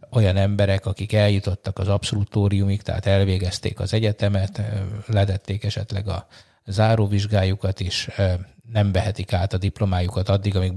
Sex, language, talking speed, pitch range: male, Hungarian, 125 wpm, 95-110 Hz